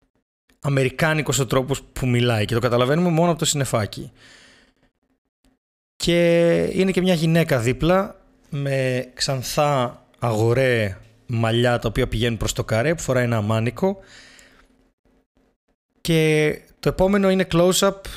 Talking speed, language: 120 wpm, Greek